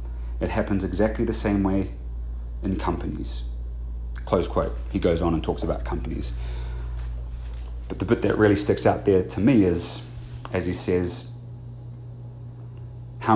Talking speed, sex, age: 145 wpm, male, 30-49